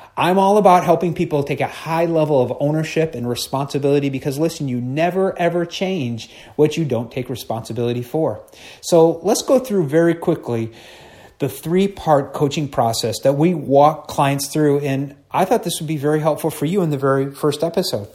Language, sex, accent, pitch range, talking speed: English, male, American, 130-165 Hz, 180 wpm